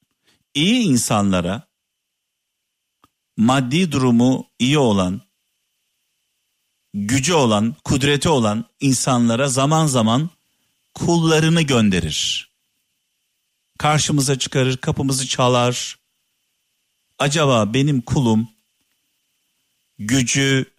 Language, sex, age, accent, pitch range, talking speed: Turkish, male, 50-69, native, 115-150 Hz, 65 wpm